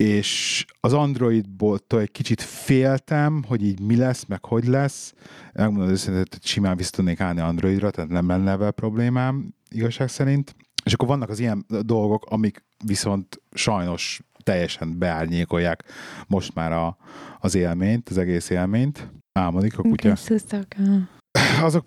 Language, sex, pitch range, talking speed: Hungarian, male, 95-130 Hz, 135 wpm